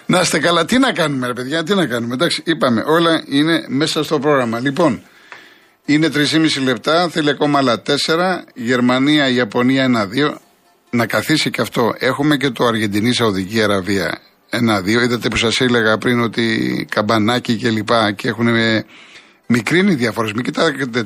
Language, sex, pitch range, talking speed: Greek, male, 115-155 Hz, 150 wpm